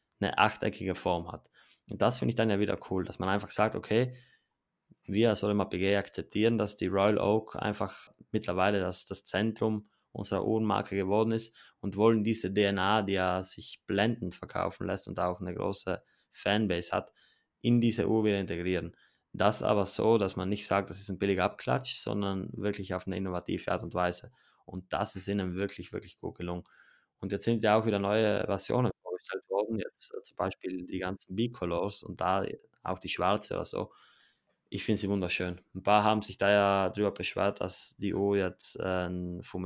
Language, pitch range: German, 95-110 Hz